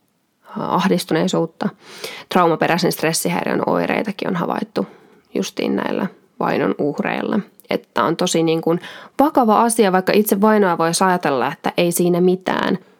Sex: female